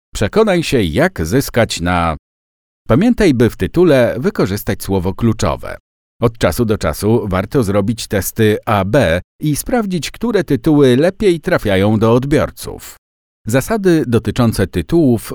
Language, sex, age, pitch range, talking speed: Polish, male, 50-69, 95-135 Hz, 120 wpm